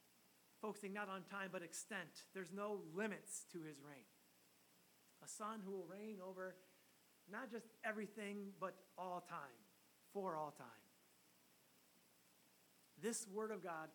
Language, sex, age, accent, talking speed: English, male, 30-49, American, 135 wpm